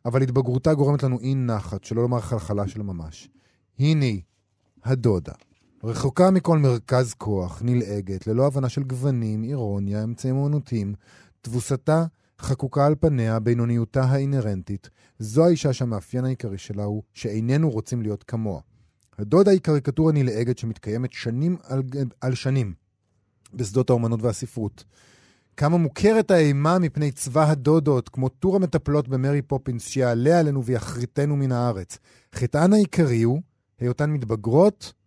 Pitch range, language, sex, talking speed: 110-150 Hz, Hebrew, male, 125 wpm